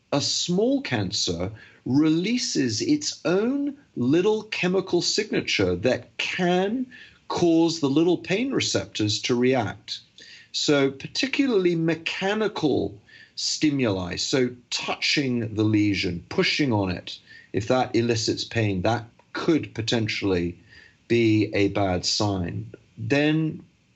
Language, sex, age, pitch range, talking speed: English, male, 40-59, 105-145 Hz, 105 wpm